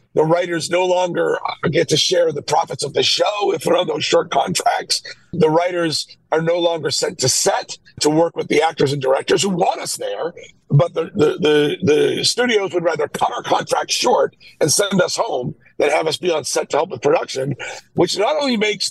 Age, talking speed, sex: 50-69, 215 wpm, male